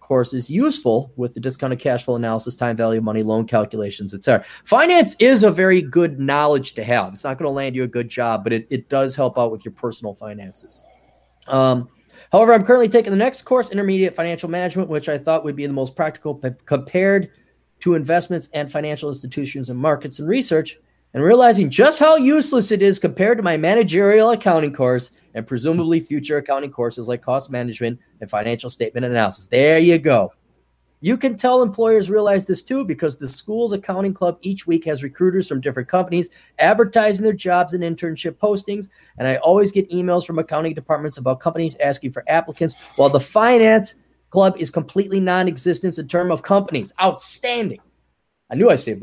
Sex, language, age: male, English, 30-49